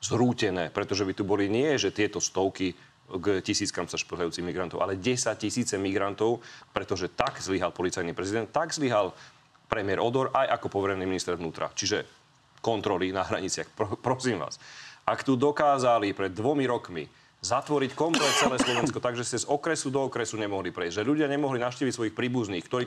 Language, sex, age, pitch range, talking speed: Slovak, male, 30-49, 105-140 Hz, 165 wpm